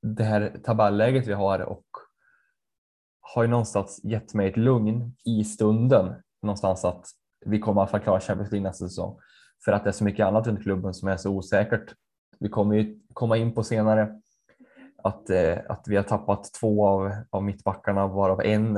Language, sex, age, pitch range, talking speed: Swedish, male, 10-29, 100-110 Hz, 175 wpm